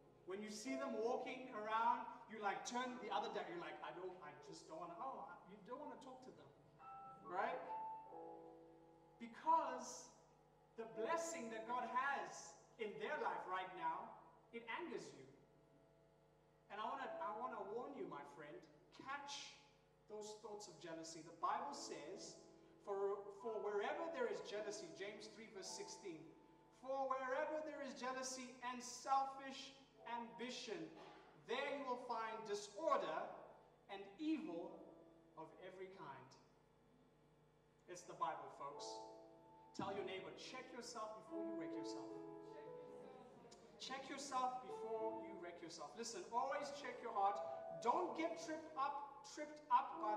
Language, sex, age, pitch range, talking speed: English, male, 30-49, 185-290 Hz, 145 wpm